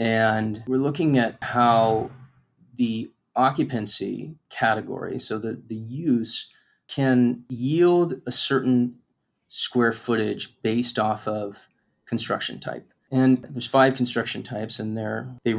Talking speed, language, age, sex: 120 wpm, English, 30-49, male